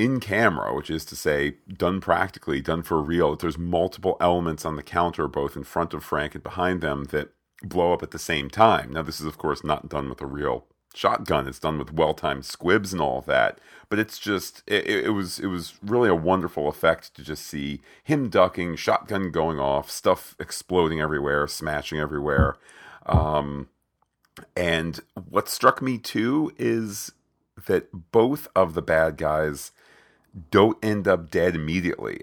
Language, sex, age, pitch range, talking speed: English, male, 40-59, 75-95 Hz, 175 wpm